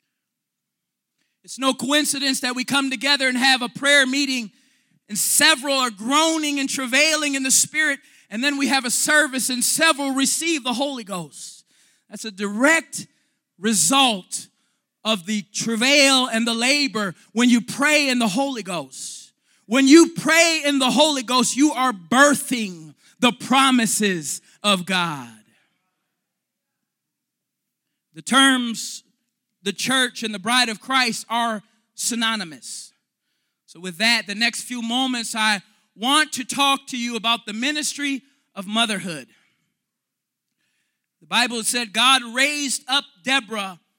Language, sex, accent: English, male, American